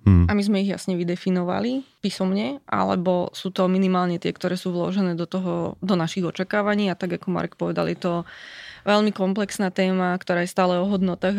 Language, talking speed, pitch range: Slovak, 185 wpm, 185-205 Hz